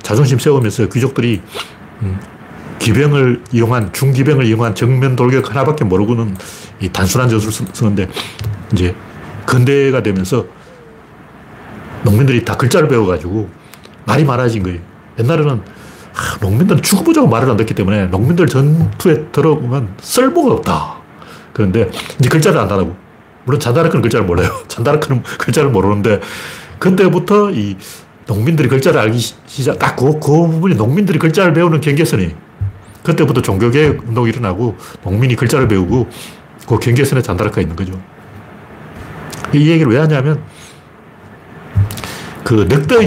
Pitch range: 105-155 Hz